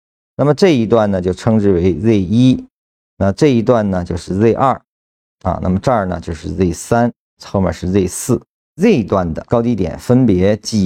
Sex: male